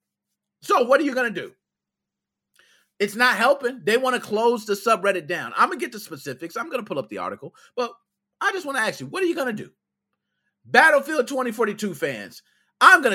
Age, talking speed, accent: 30-49, 220 wpm, American